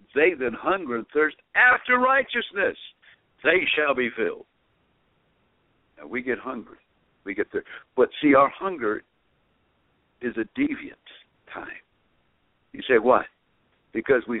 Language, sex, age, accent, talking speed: English, male, 60-79, American, 130 wpm